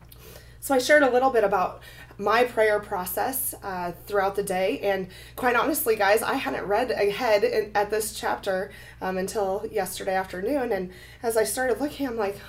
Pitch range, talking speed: 190-235 Hz, 175 wpm